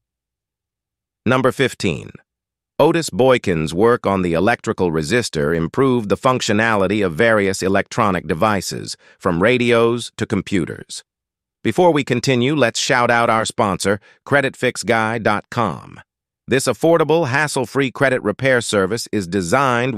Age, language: 50-69, English